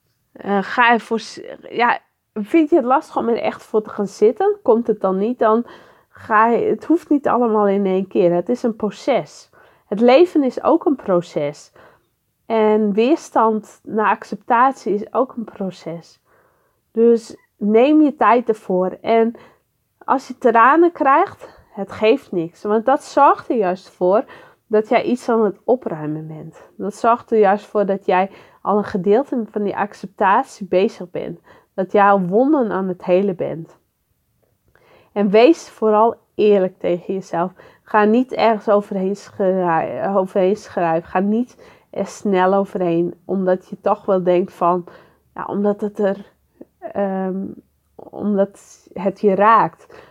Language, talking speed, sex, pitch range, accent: English, 145 wpm, female, 185-235 Hz, Dutch